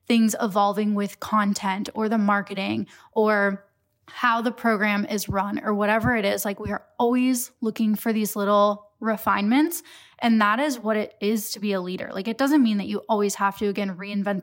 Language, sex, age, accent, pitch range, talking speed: English, female, 10-29, American, 200-235 Hz, 195 wpm